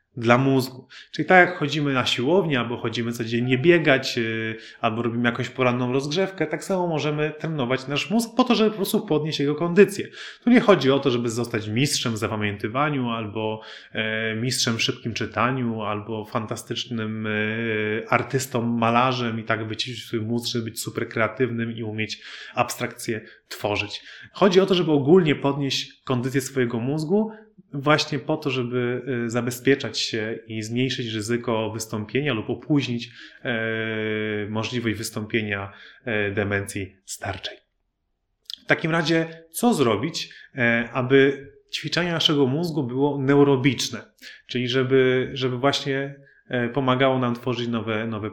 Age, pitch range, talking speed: 30-49, 115-150 Hz, 135 wpm